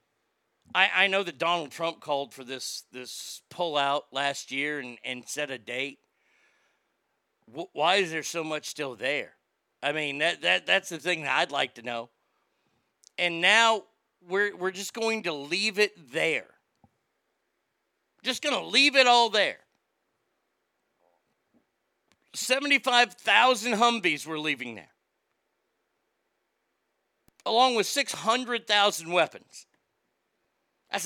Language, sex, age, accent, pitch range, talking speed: English, male, 50-69, American, 155-205 Hz, 135 wpm